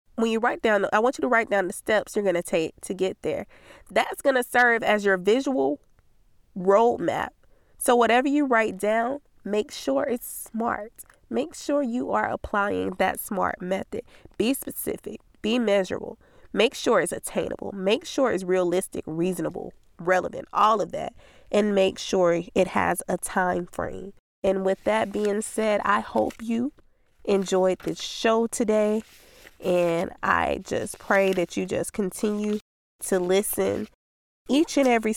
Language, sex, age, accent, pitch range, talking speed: English, female, 20-39, American, 190-225 Hz, 160 wpm